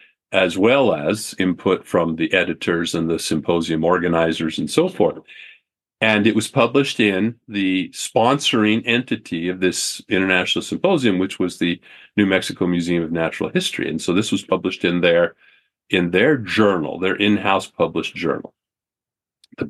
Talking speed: 150 wpm